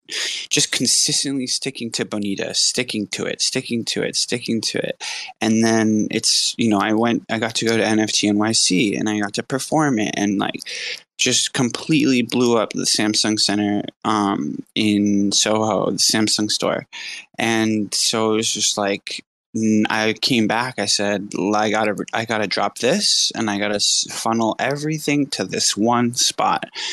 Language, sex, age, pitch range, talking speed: English, male, 20-39, 105-125 Hz, 170 wpm